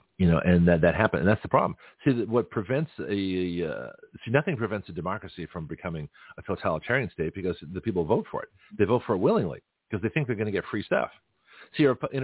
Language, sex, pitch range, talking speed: English, male, 95-125 Hz, 235 wpm